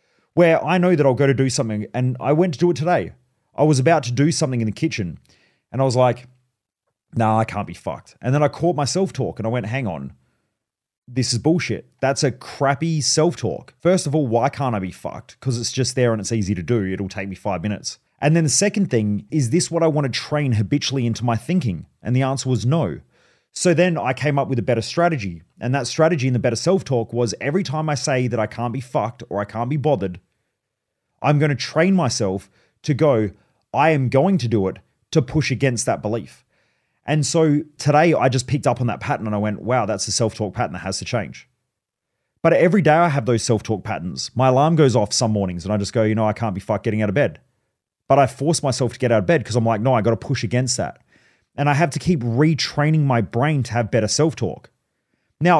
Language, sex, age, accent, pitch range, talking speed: English, male, 30-49, Australian, 110-150 Hz, 245 wpm